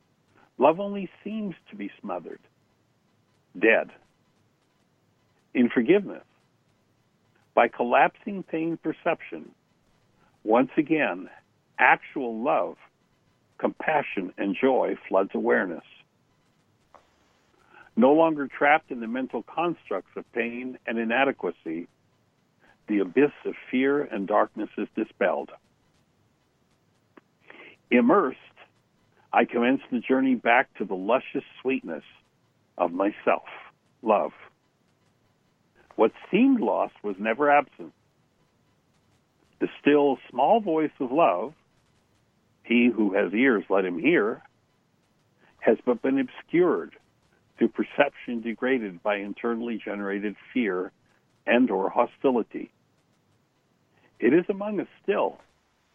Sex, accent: male, American